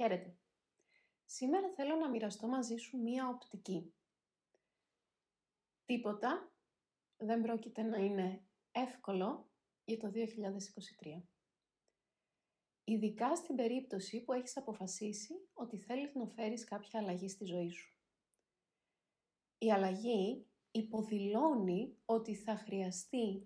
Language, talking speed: Greek, 100 wpm